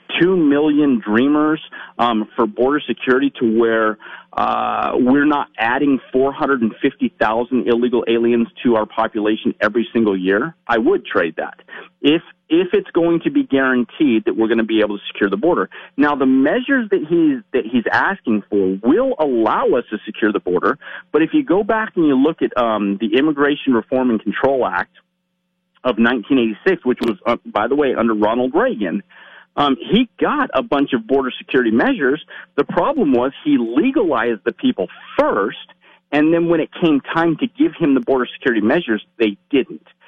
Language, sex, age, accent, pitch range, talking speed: English, male, 40-59, American, 115-190 Hz, 180 wpm